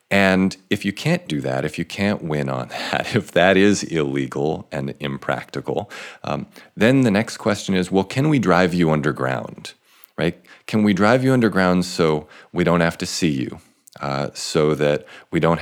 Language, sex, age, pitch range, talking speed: English, male, 40-59, 65-90 Hz, 185 wpm